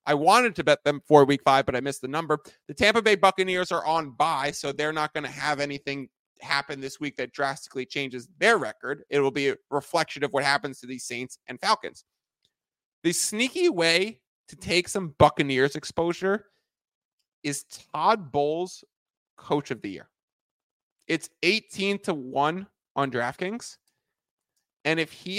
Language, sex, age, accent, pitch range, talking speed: English, male, 30-49, American, 135-170 Hz, 170 wpm